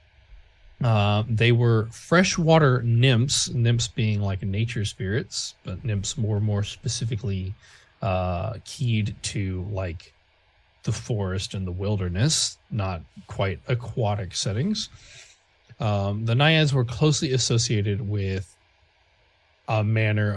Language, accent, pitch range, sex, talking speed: English, American, 100-125 Hz, male, 110 wpm